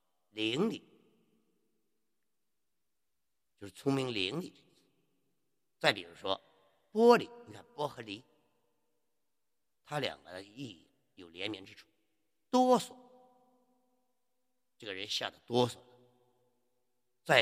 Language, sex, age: Chinese, male, 50-69